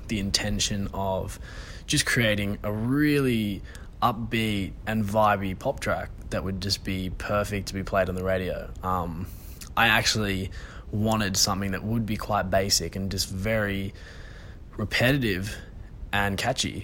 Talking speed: 140 wpm